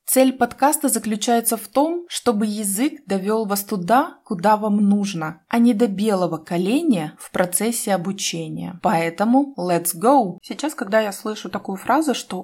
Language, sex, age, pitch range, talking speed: Russian, female, 20-39, 190-255 Hz, 150 wpm